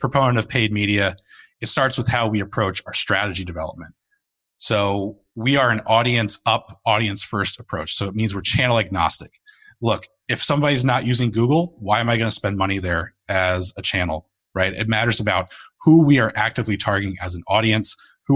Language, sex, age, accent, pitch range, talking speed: English, male, 30-49, American, 100-130 Hz, 185 wpm